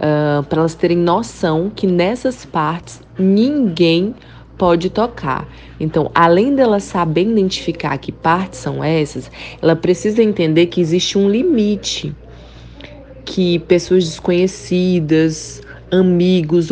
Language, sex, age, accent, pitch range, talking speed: Portuguese, female, 20-39, Brazilian, 160-190 Hz, 110 wpm